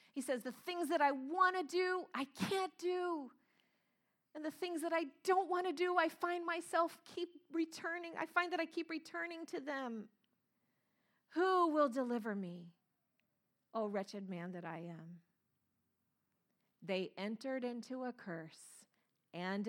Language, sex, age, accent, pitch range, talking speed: English, female, 40-59, American, 195-300 Hz, 150 wpm